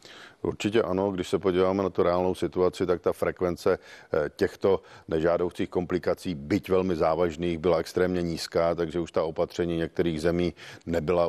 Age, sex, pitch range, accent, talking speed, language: 50-69, male, 85-90 Hz, native, 150 wpm, Czech